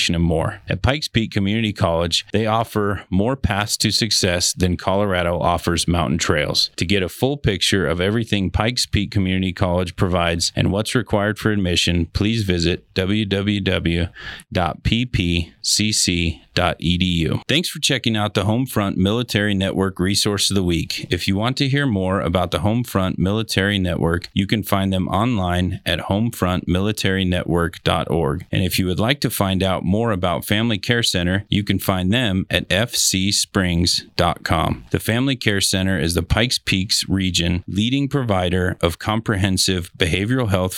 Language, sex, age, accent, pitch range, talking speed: English, male, 30-49, American, 90-110 Hz, 150 wpm